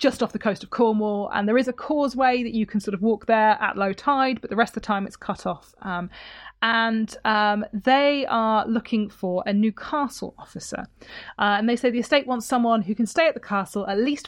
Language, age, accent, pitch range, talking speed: English, 30-49, British, 200-245 Hz, 240 wpm